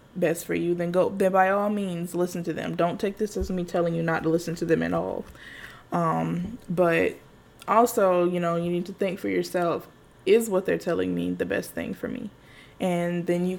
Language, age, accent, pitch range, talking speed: English, 10-29, American, 175-195 Hz, 220 wpm